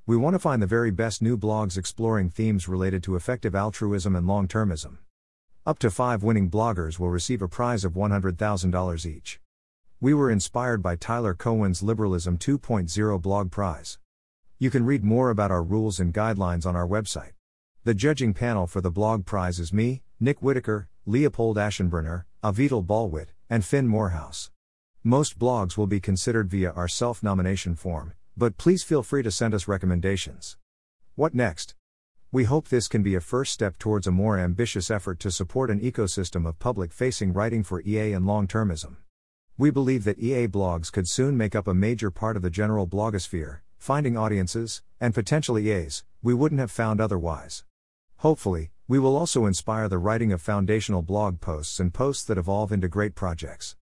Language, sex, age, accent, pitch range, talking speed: English, male, 50-69, American, 90-115 Hz, 175 wpm